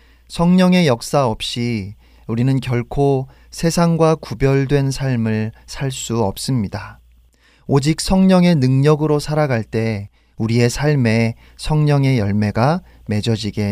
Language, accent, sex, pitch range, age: Korean, native, male, 110-140 Hz, 40-59